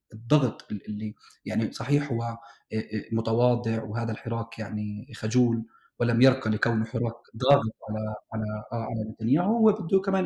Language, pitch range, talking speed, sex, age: Arabic, 115-140 Hz, 130 wpm, male, 30-49